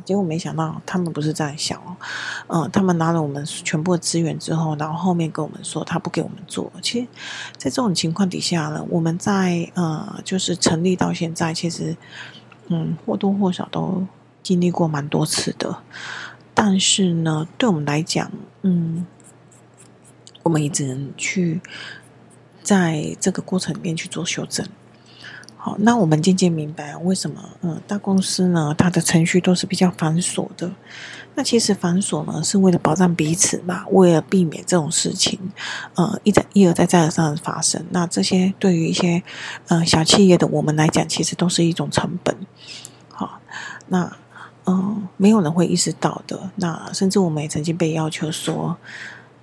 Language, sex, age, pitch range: Chinese, female, 30-49, 165-190 Hz